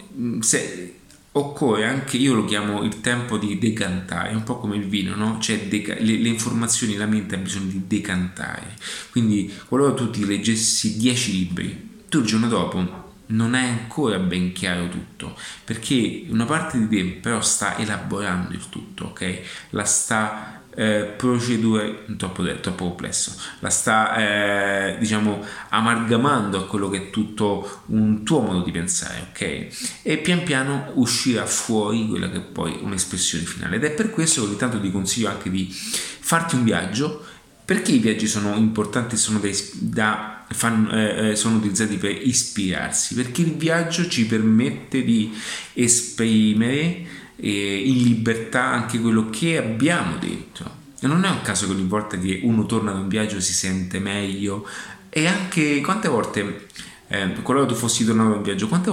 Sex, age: male, 30-49